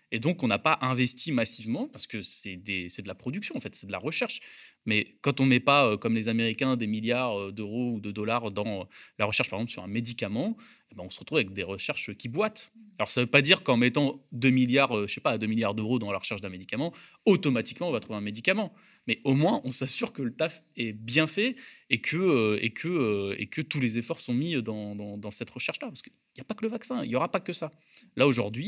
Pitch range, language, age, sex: 105-140 Hz, French, 20-39, male